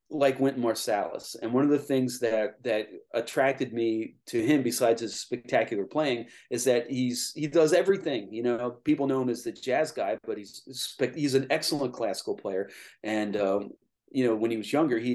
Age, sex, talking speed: 30-49, male, 195 wpm